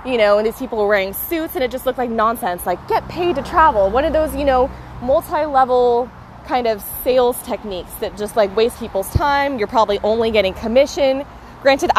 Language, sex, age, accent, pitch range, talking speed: English, female, 20-39, American, 185-240 Hz, 205 wpm